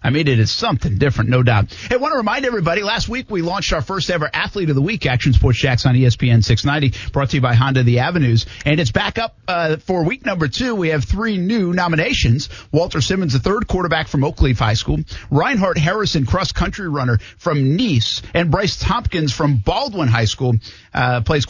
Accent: American